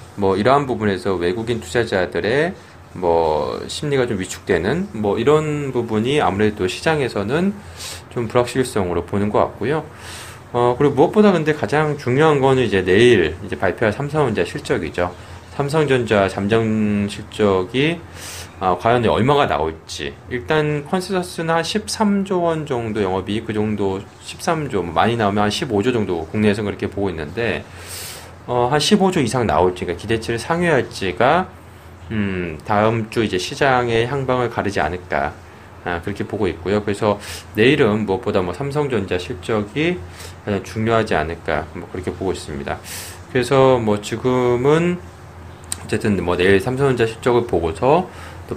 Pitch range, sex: 90-125 Hz, male